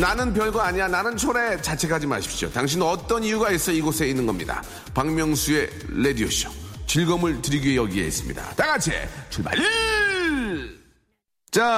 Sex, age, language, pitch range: male, 40-59, Korean, 115-170 Hz